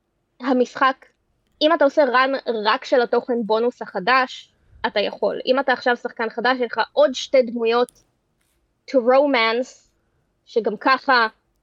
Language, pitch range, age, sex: Hebrew, 215-255 Hz, 20-39, female